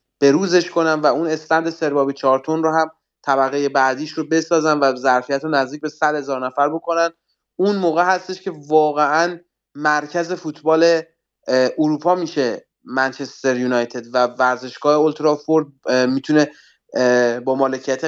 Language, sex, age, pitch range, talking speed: Persian, male, 30-49, 135-170 Hz, 130 wpm